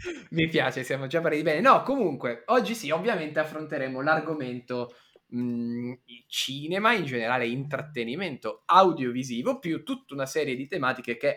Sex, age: male, 20-39